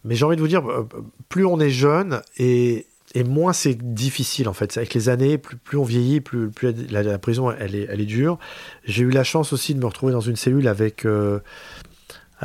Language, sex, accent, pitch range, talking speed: French, male, French, 110-140 Hz, 225 wpm